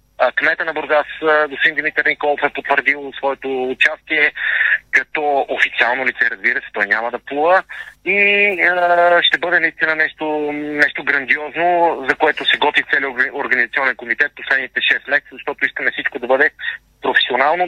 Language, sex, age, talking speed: Bulgarian, male, 40-59, 150 wpm